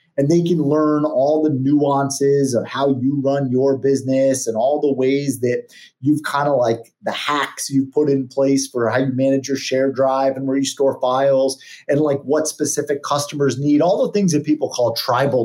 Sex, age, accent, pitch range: male, 30-49, American, 130-160 Hz